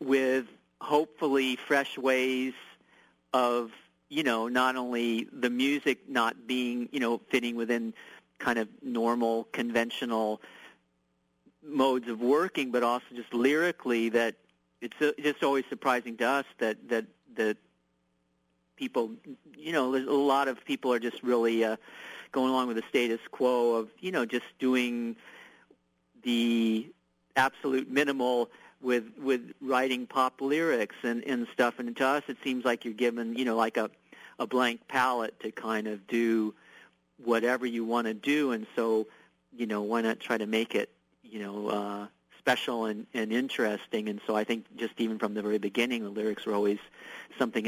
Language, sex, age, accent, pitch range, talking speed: English, male, 50-69, American, 110-130 Hz, 160 wpm